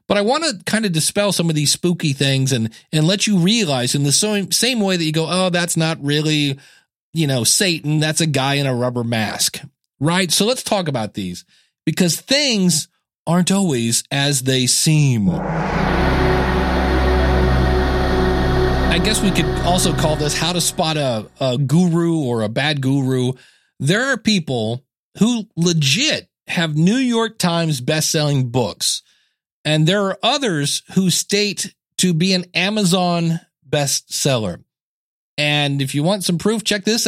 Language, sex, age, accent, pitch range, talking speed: English, male, 40-59, American, 130-185 Hz, 160 wpm